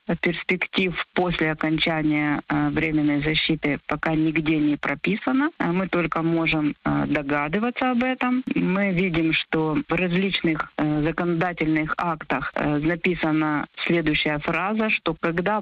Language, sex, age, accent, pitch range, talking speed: Ukrainian, female, 40-59, native, 160-205 Hz, 105 wpm